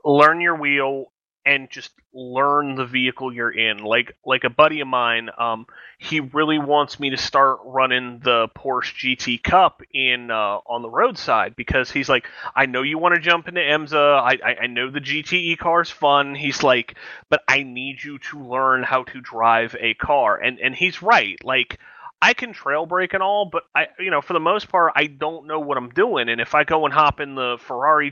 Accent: American